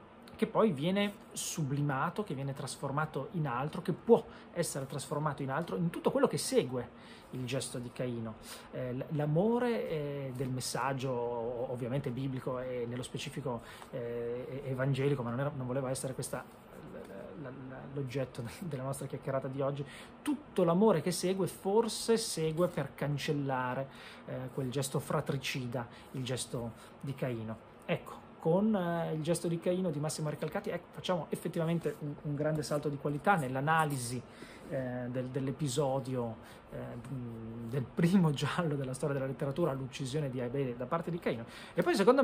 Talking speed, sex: 140 wpm, male